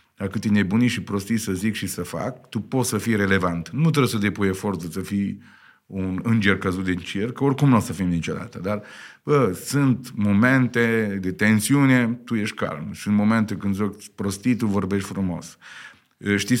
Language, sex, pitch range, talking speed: Romanian, male, 95-120 Hz, 185 wpm